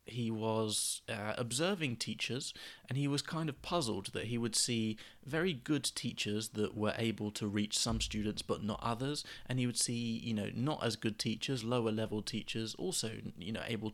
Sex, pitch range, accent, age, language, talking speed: male, 105-120 Hz, British, 20-39, English, 195 wpm